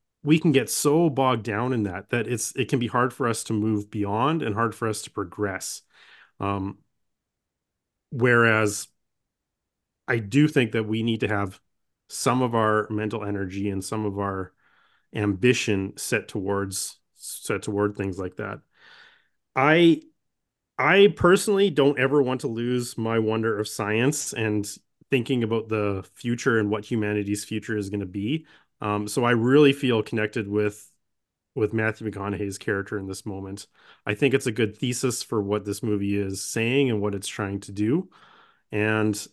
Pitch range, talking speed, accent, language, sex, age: 105-125 Hz, 170 wpm, American, English, male, 30-49